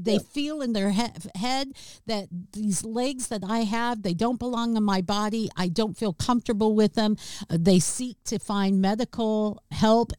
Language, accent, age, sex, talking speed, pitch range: English, American, 50-69, female, 170 wpm, 190-260 Hz